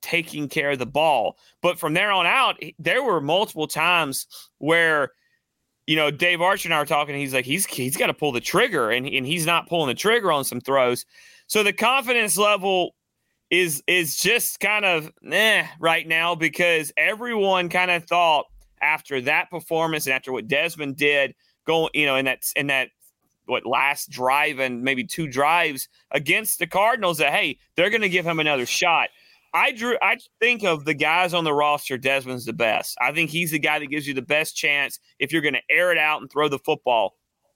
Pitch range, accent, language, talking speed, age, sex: 145-180 Hz, American, English, 205 wpm, 30-49, male